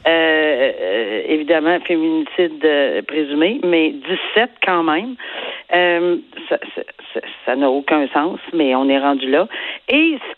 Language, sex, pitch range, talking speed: French, female, 165-245 Hz, 145 wpm